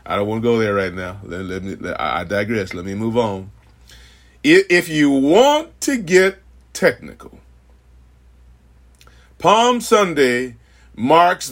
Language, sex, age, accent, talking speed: English, male, 40-59, American, 140 wpm